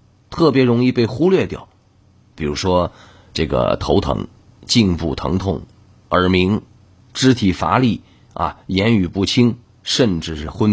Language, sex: Chinese, male